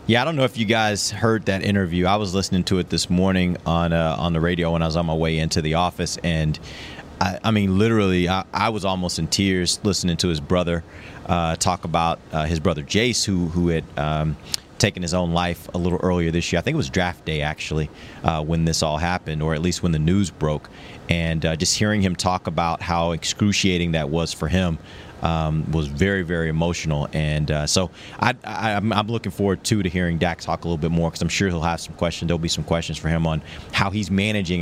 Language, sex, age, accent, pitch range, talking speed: English, male, 30-49, American, 80-95 Hz, 240 wpm